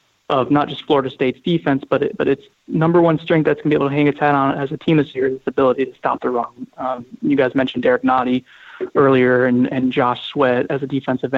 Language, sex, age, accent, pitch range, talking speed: English, male, 20-39, American, 130-150 Hz, 260 wpm